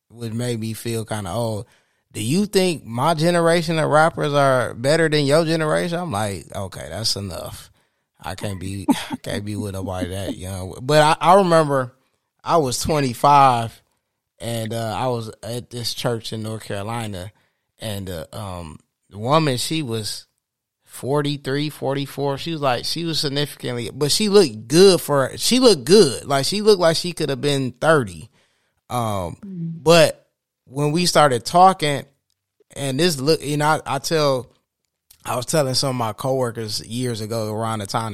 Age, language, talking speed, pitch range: 20-39, English, 165 wpm, 110-150 Hz